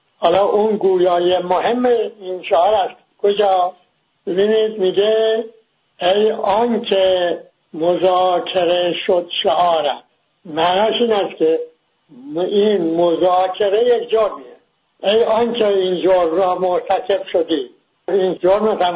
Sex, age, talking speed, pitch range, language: male, 60-79, 100 wpm, 180-220 Hz, English